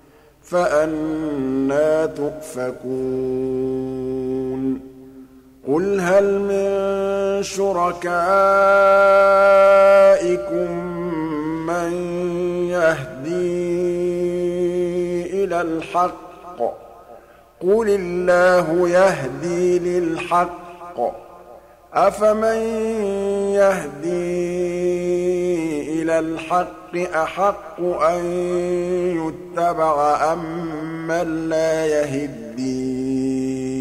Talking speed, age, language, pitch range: 45 wpm, 50-69, Arabic, 145-180 Hz